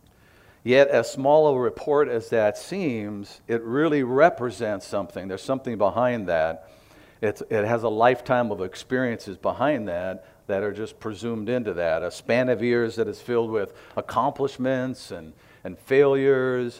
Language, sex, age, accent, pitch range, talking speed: English, male, 50-69, American, 105-125 Hz, 150 wpm